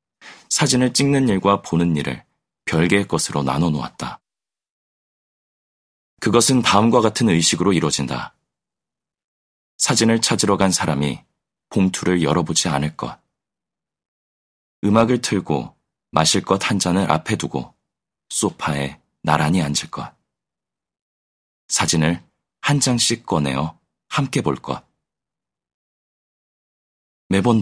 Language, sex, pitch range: Korean, male, 75-105 Hz